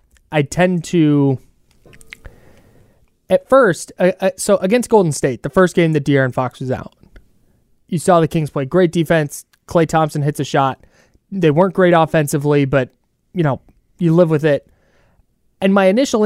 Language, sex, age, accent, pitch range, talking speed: English, male, 20-39, American, 130-170 Hz, 160 wpm